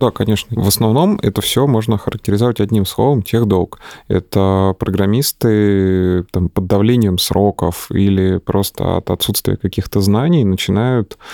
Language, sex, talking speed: Russian, male, 120 wpm